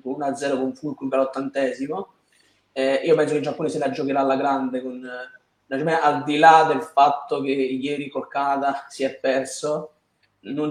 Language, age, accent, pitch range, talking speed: Italian, 20-39, native, 135-150 Hz, 185 wpm